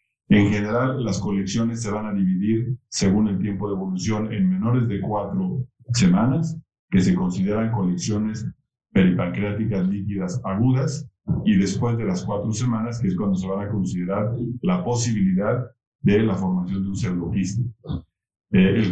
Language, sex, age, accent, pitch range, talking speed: Spanish, male, 50-69, Mexican, 95-120 Hz, 150 wpm